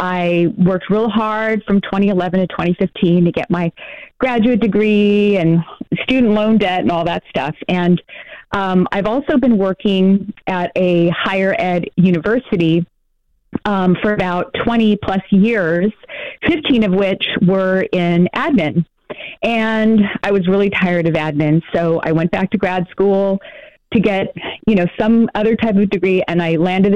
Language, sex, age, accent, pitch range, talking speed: English, female, 30-49, American, 175-215 Hz, 155 wpm